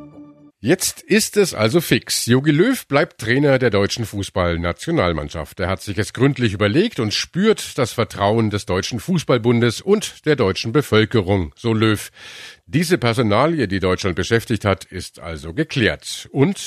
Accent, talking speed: German, 150 wpm